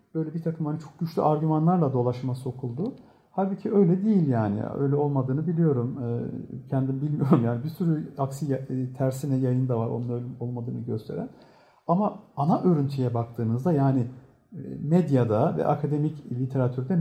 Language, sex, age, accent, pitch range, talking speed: Turkish, male, 50-69, native, 130-175 Hz, 140 wpm